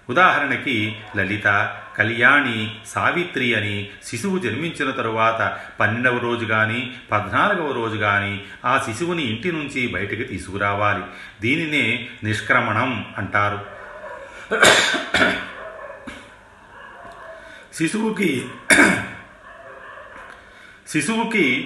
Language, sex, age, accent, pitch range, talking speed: Telugu, male, 40-59, native, 100-125 Hz, 70 wpm